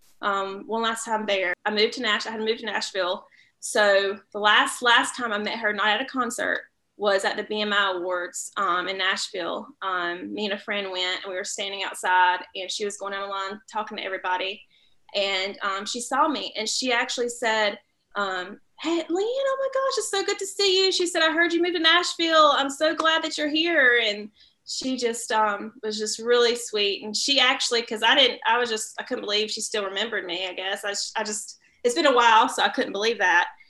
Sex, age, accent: female, 20-39, American